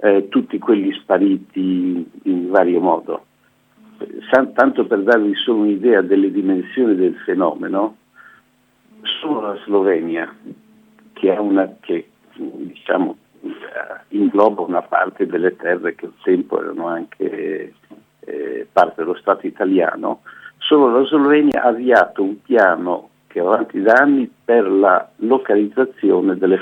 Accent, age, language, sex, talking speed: native, 50-69, Italian, male, 130 wpm